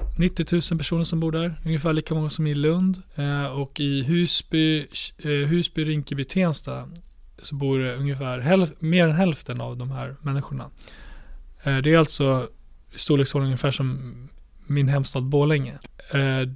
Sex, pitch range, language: male, 135-155 Hz, Swedish